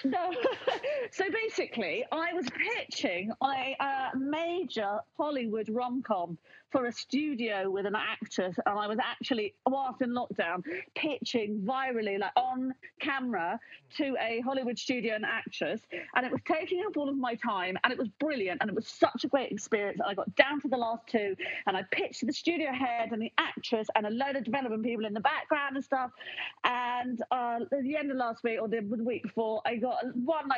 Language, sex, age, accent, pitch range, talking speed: English, female, 40-59, British, 220-285 Hz, 190 wpm